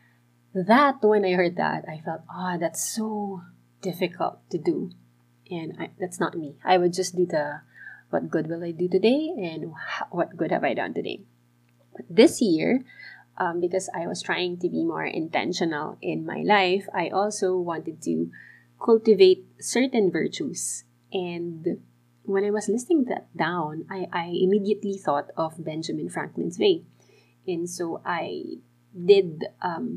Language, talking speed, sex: English, 155 wpm, female